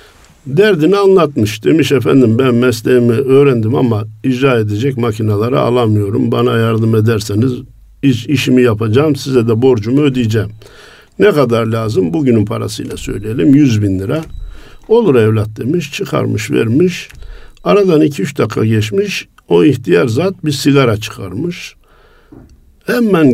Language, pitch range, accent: Turkish, 110-145 Hz, native